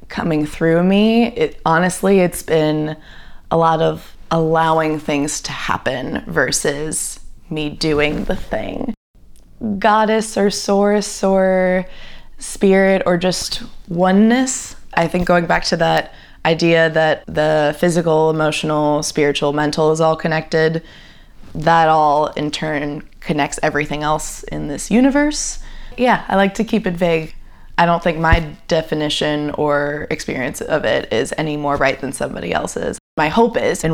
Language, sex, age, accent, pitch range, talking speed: English, female, 20-39, American, 150-185 Hz, 140 wpm